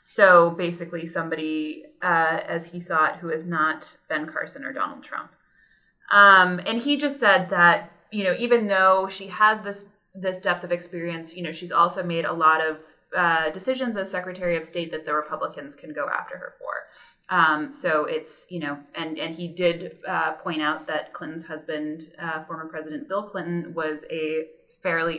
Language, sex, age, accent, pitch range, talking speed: English, female, 20-39, American, 160-190 Hz, 185 wpm